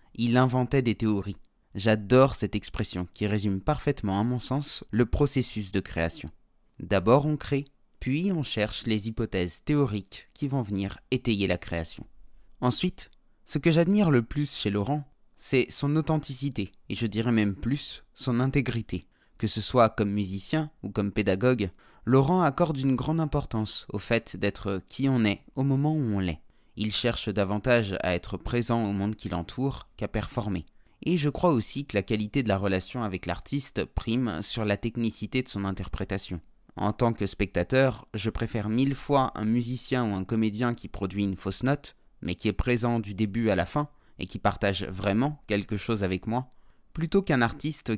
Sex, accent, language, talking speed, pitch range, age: male, French, French, 180 wpm, 100-130 Hz, 20-39